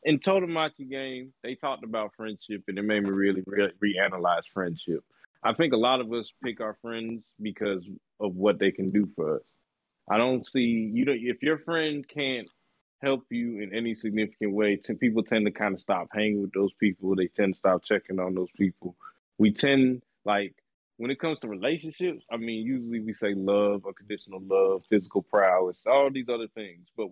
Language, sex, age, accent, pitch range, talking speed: English, male, 20-39, American, 105-135 Hz, 190 wpm